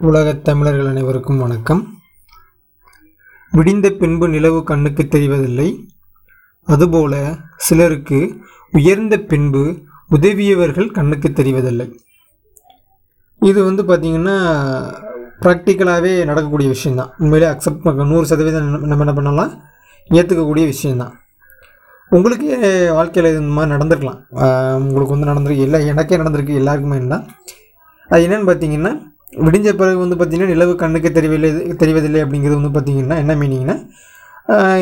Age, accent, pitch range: 20-39, native, 145-185 Hz